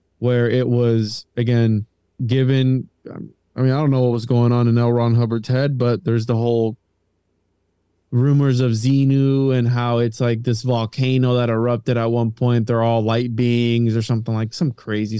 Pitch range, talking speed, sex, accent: 110-130 Hz, 180 wpm, male, American